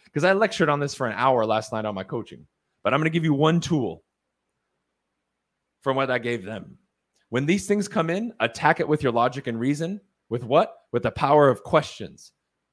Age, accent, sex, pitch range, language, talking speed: 30-49, American, male, 120-175 Hz, English, 205 wpm